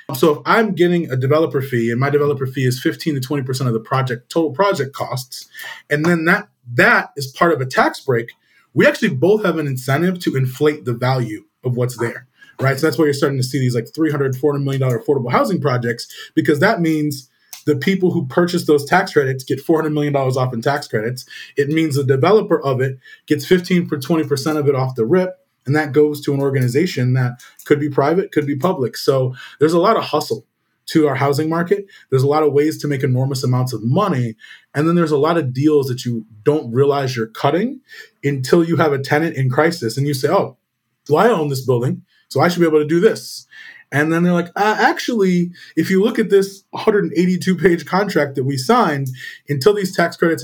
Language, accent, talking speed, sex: English, American, 225 wpm, male